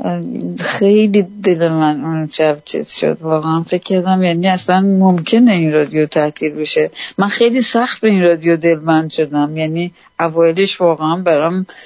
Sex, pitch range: female, 155-185 Hz